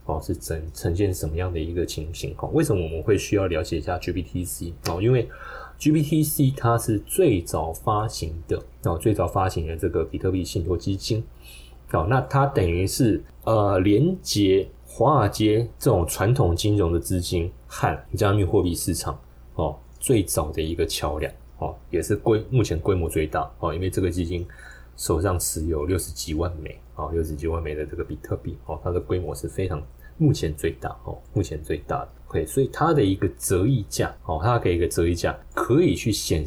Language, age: Chinese, 20-39